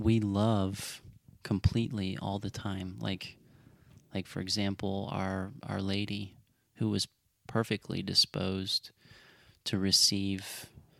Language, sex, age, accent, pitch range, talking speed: English, male, 30-49, American, 100-120 Hz, 105 wpm